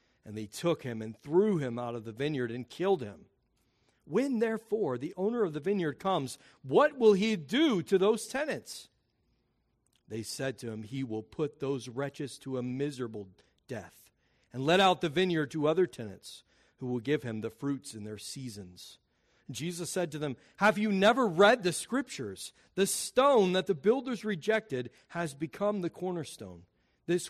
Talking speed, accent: 175 wpm, American